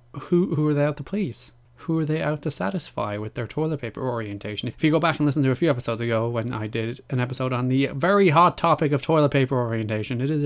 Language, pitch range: English, 110-145 Hz